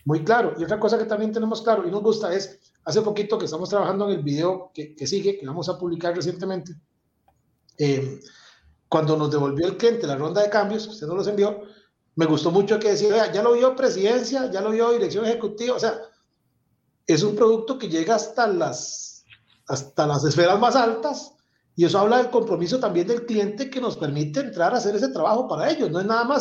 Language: Spanish